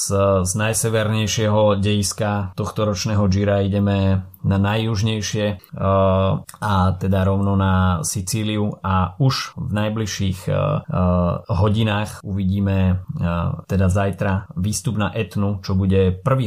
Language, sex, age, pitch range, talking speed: Slovak, male, 20-39, 90-105 Hz, 100 wpm